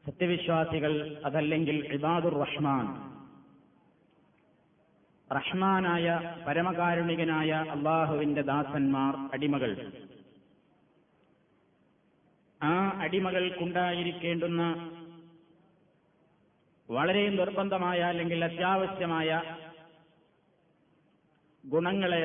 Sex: male